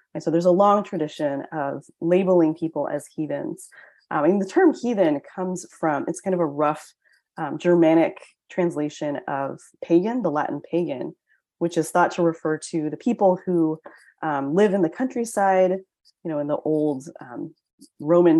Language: English